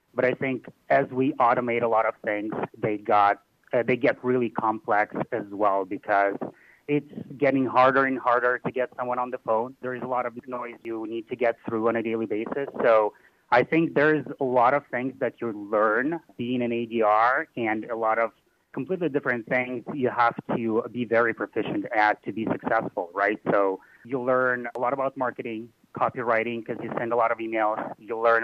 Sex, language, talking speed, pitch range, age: male, English, 200 wpm, 110-125 Hz, 30-49